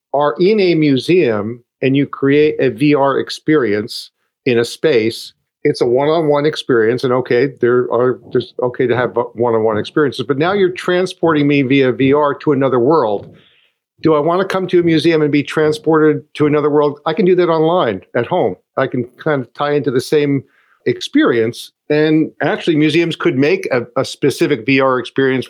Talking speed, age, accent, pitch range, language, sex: 180 wpm, 50-69, American, 130-165 Hz, English, male